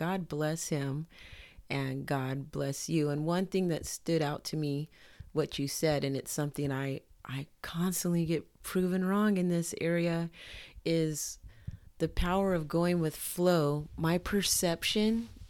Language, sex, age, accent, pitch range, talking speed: English, female, 30-49, American, 150-185 Hz, 150 wpm